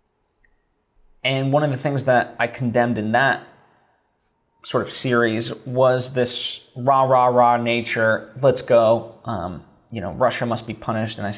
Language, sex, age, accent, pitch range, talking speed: English, male, 20-39, American, 110-135 Hz, 150 wpm